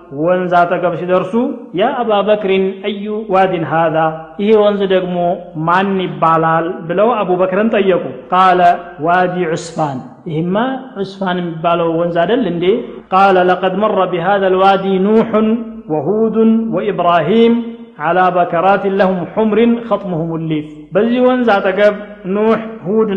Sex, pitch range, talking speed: male, 170-205 Hz, 115 wpm